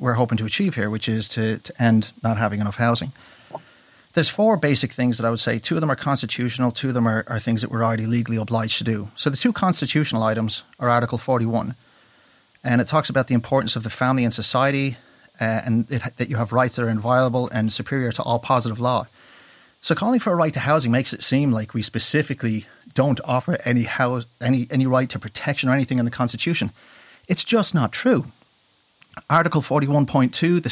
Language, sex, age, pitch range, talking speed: English, male, 30-49, 115-150 Hz, 215 wpm